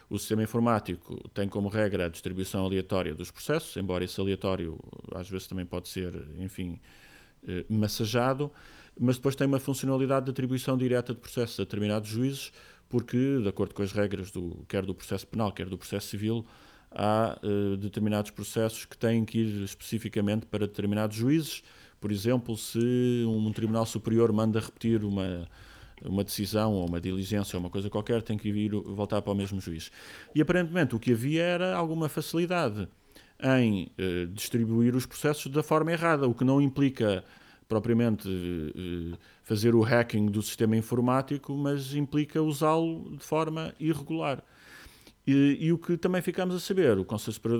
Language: Portuguese